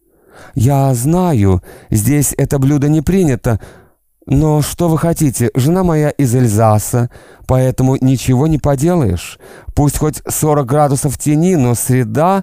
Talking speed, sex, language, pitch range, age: 125 wpm, male, Russian, 115-150 Hz, 40-59